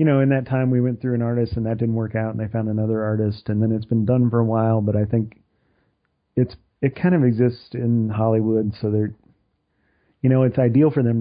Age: 40-59